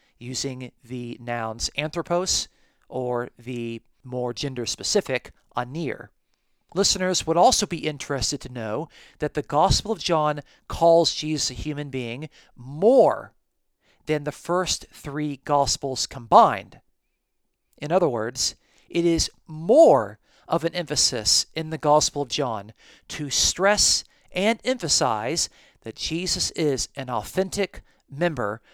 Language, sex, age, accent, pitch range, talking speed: English, male, 40-59, American, 125-165 Hz, 120 wpm